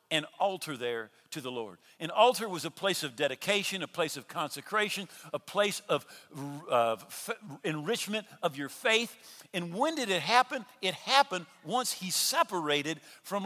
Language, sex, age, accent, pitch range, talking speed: English, male, 50-69, American, 185-280 Hz, 165 wpm